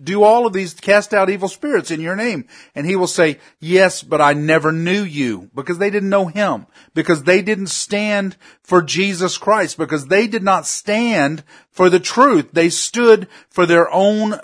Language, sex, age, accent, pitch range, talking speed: English, male, 40-59, American, 150-185 Hz, 190 wpm